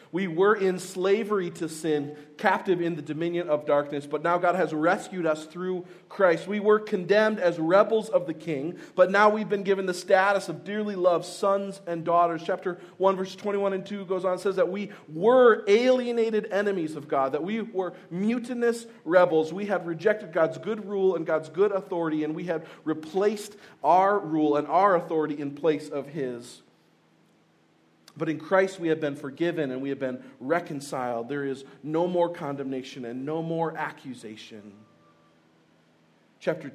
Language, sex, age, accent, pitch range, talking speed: English, male, 40-59, American, 125-185 Hz, 175 wpm